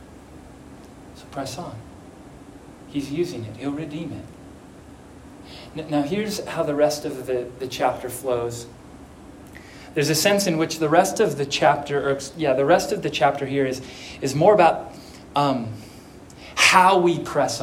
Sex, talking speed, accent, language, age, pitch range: male, 145 wpm, American, English, 30-49, 145-195 Hz